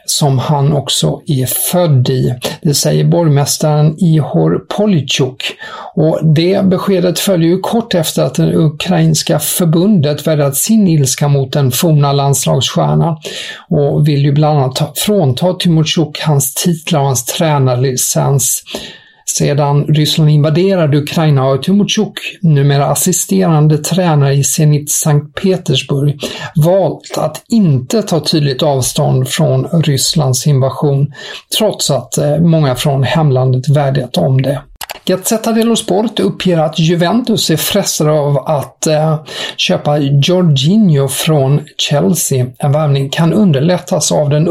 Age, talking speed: 50-69, 125 wpm